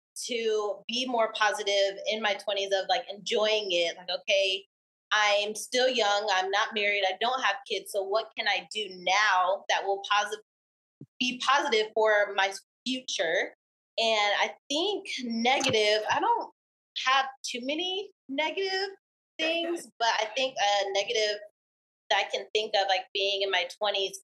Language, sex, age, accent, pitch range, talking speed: English, female, 20-39, American, 195-250 Hz, 155 wpm